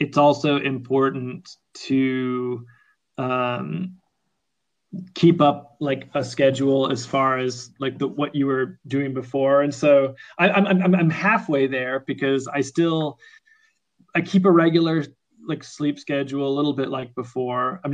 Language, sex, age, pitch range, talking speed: English, male, 20-39, 130-145 Hz, 145 wpm